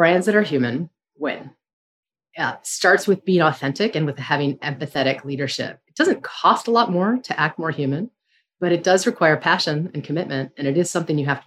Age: 30-49